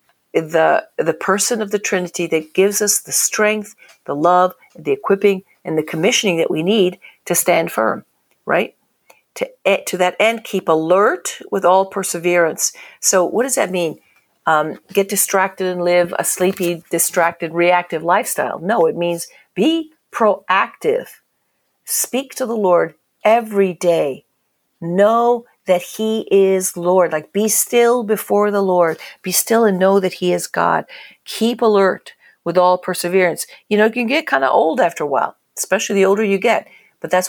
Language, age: English, 50-69